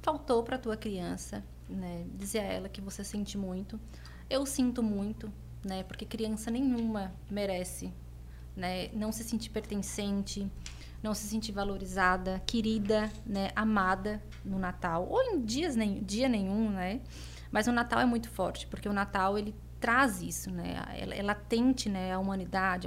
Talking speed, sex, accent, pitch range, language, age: 155 wpm, female, Brazilian, 190-230 Hz, Portuguese, 20-39